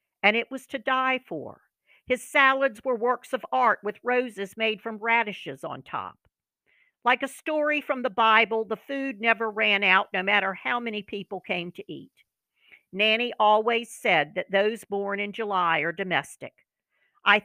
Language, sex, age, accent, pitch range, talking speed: English, female, 50-69, American, 195-250 Hz, 170 wpm